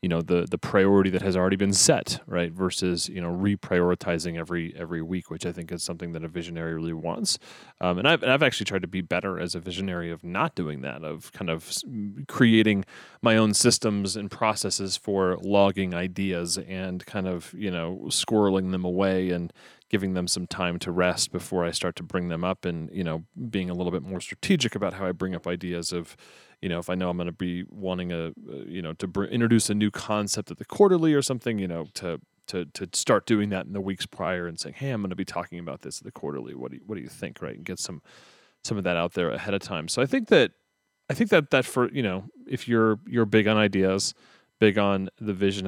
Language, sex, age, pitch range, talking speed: English, male, 30-49, 90-105 Hz, 240 wpm